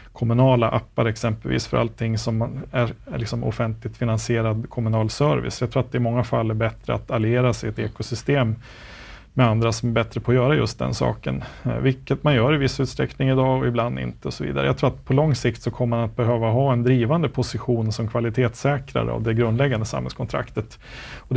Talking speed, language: 205 wpm, Swedish